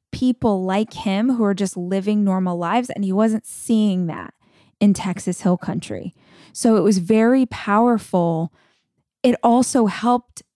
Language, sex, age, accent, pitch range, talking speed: English, female, 20-39, American, 185-225 Hz, 150 wpm